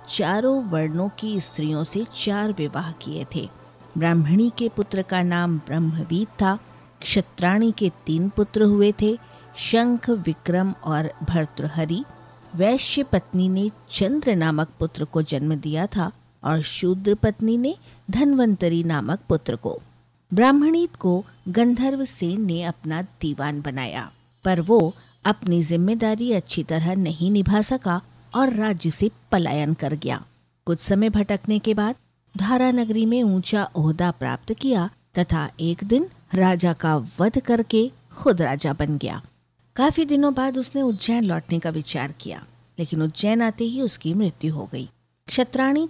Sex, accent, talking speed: female, native, 135 wpm